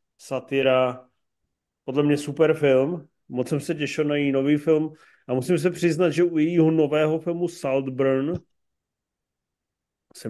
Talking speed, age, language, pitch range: 140 wpm, 40-59, Czech, 125-150 Hz